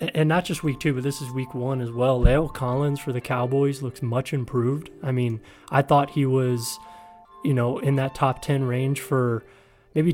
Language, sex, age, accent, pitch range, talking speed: English, male, 20-39, American, 130-145 Hz, 205 wpm